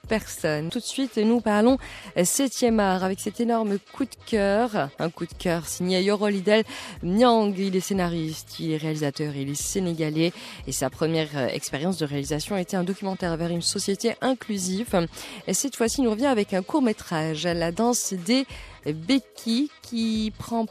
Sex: female